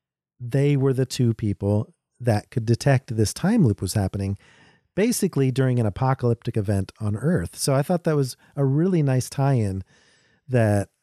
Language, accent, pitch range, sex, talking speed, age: English, American, 110-140 Hz, male, 170 wpm, 40-59